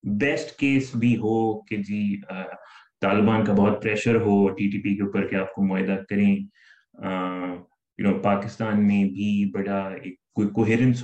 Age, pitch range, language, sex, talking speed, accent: 20-39, 100-120 Hz, English, male, 105 wpm, Indian